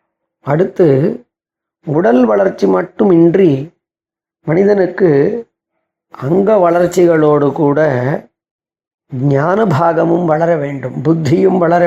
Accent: native